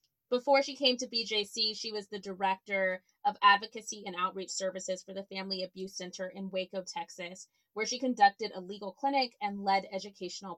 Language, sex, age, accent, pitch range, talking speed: English, female, 20-39, American, 195-260 Hz, 175 wpm